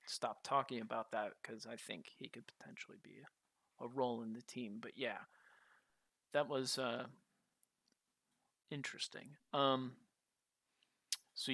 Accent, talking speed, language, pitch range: American, 130 wpm, English, 115-140 Hz